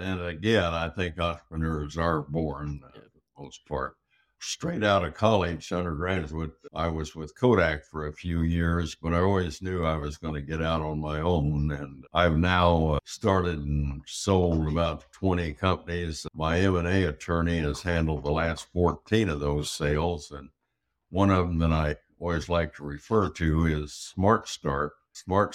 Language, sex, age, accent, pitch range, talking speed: English, male, 60-79, American, 75-95 Hz, 175 wpm